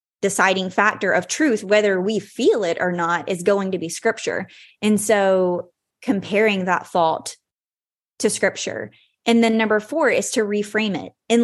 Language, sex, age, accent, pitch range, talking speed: English, female, 20-39, American, 190-230 Hz, 165 wpm